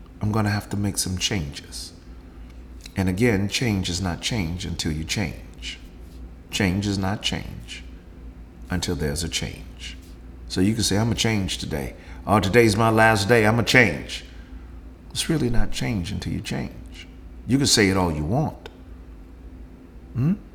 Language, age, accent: English, 40-59, American